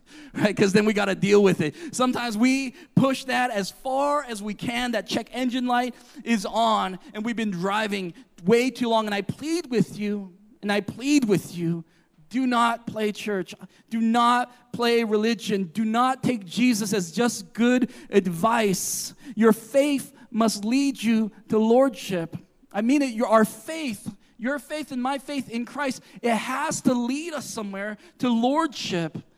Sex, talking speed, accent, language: male, 170 wpm, American, English